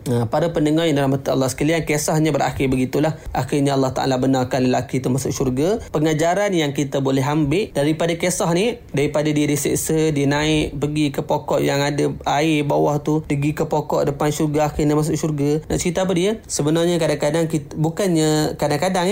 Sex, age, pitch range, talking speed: male, 20-39, 135-160 Hz, 175 wpm